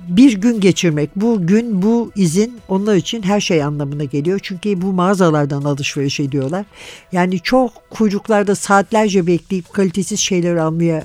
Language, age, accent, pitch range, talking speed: Turkish, 60-79, native, 155-200 Hz, 140 wpm